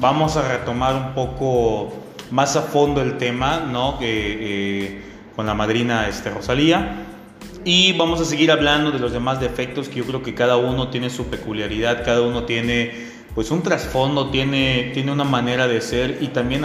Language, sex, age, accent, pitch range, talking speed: Spanish, male, 30-49, Mexican, 110-135 Hz, 180 wpm